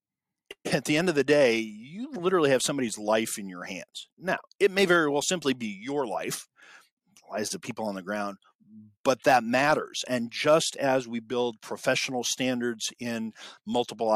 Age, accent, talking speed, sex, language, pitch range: 40-59, American, 175 wpm, male, English, 110-135 Hz